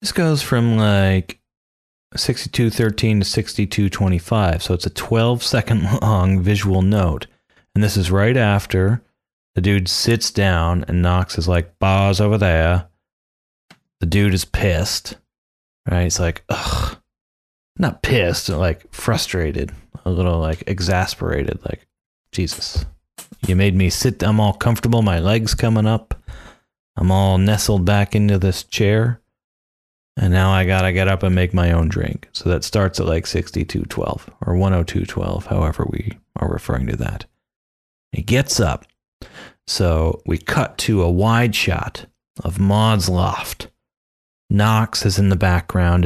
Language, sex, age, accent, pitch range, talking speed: English, male, 30-49, American, 85-110 Hz, 145 wpm